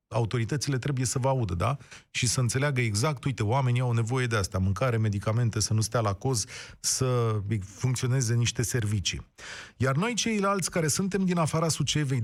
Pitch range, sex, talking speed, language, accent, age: 115-150 Hz, male, 170 wpm, Romanian, native, 30-49